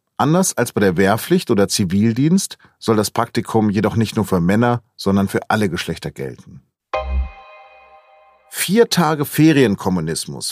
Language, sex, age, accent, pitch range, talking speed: German, male, 40-59, German, 100-130 Hz, 130 wpm